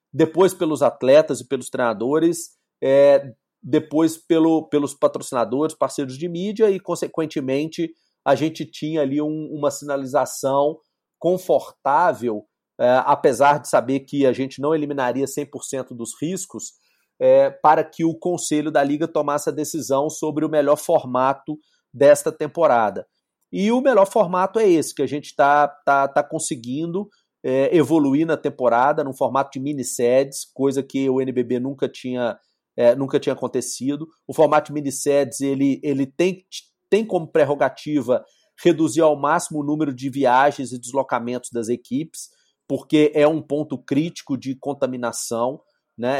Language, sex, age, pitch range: Portuguese, male, 40-59, 135-160 Hz